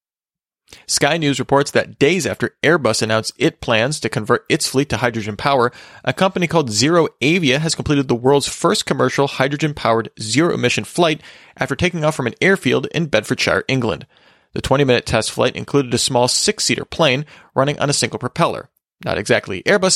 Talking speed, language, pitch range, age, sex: 170 wpm, English, 115-150 Hz, 30-49, male